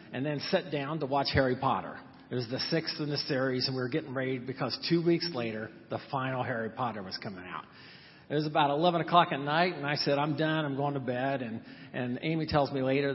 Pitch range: 130-155 Hz